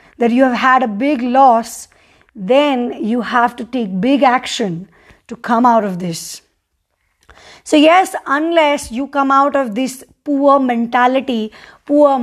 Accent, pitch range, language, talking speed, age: Indian, 220-275 Hz, English, 145 wpm, 20-39